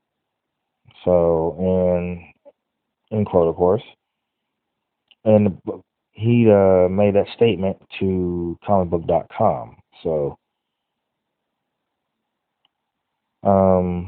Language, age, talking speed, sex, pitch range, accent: English, 30-49, 70 wpm, male, 90-105 Hz, American